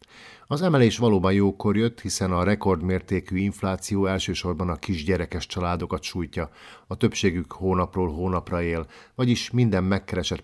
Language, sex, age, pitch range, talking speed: Hungarian, male, 50-69, 85-105 Hz, 125 wpm